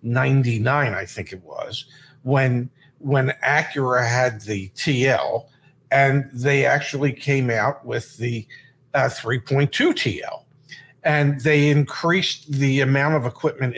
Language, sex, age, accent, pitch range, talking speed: English, male, 50-69, American, 130-155 Hz, 120 wpm